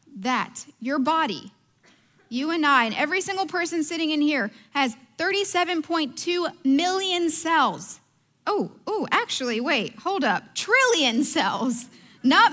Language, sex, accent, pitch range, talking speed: English, female, American, 230-310 Hz, 125 wpm